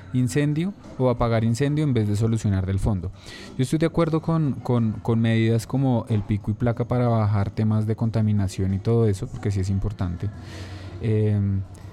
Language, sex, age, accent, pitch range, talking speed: Spanish, male, 20-39, Colombian, 105-125 Hz, 175 wpm